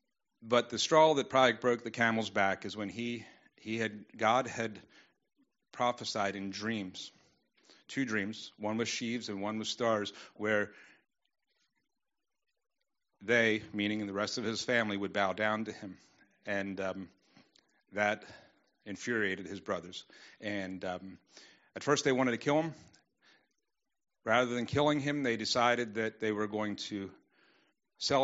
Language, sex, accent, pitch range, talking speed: English, male, American, 105-120 Hz, 145 wpm